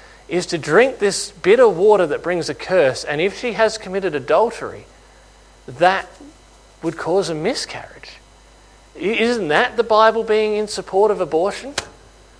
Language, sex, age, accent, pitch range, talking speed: English, male, 40-59, Australian, 160-215 Hz, 145 wpm